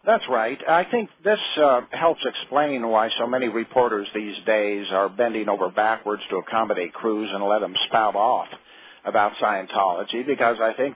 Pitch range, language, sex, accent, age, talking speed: 110-125 Hz, English, male, American, 50-69, 170 wpm